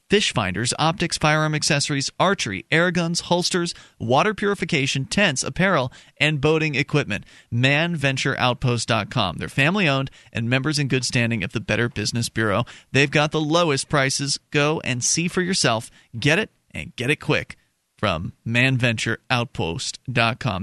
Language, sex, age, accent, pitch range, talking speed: English, male, 30-49, American, 125-165 Hz, 135 wpm